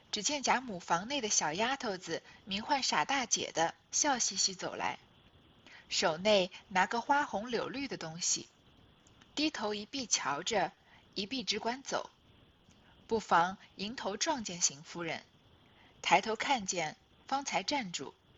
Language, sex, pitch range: Chinese, female, 185-255 Hz